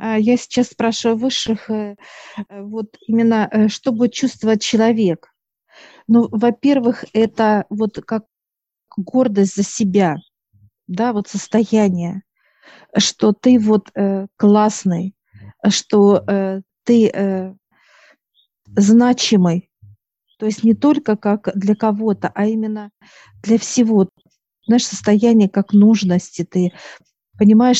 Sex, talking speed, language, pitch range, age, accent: female, 95 wpm, Russian, 195-225 Hz, 50-69, native